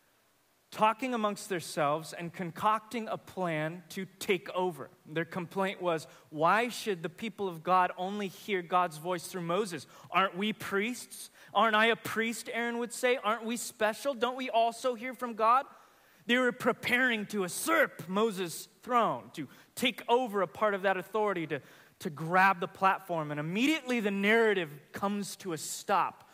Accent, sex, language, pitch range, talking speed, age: American, male, English, 130-200 Hz, 165 wpm, 20-39